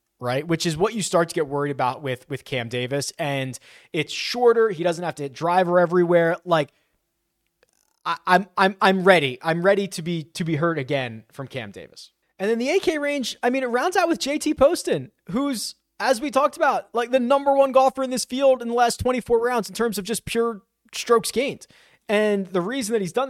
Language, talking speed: English, 220 wpm